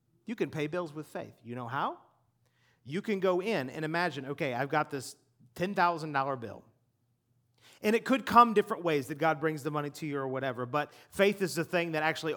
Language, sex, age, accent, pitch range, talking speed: English, male, 40-59, American, 145-215 Hz, 210 wpm